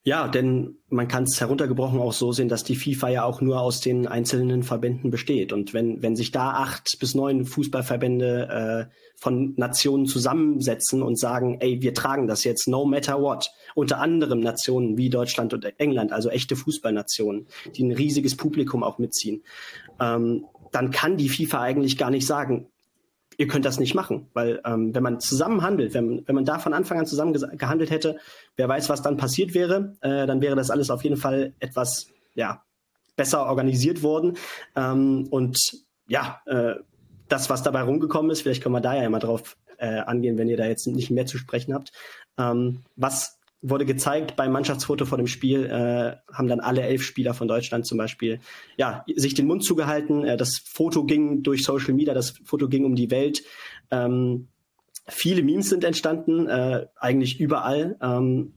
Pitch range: 125-145 Hz